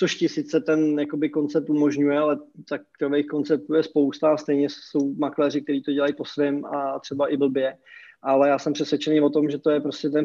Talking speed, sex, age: 205 wpm, male, 20-39